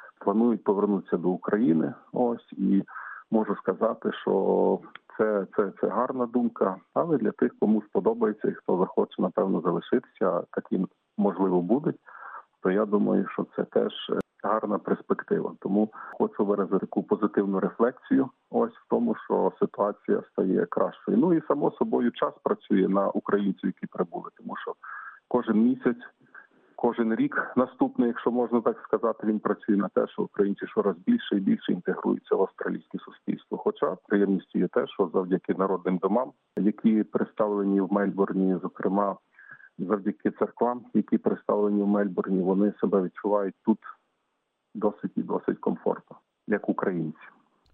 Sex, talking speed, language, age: male, 140 wpm, Ukrainian, 50-69